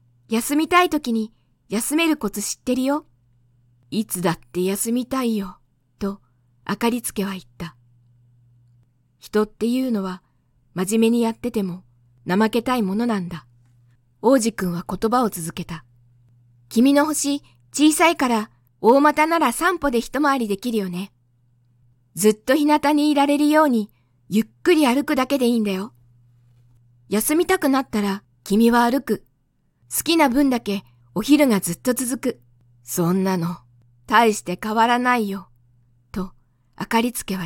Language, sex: Japanese, female